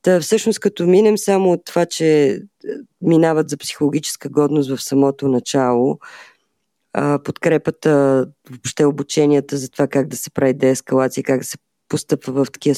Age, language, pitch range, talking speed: 20-39, Bulgarian, 130-160 Hz, 145 wpm